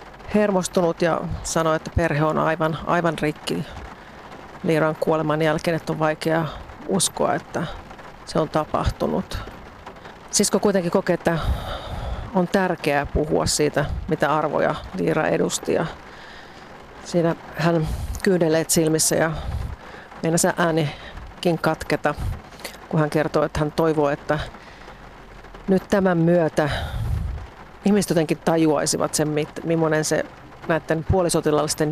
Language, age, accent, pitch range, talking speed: Finnish, 50-69, native, 150-170 Hz, 110 wpm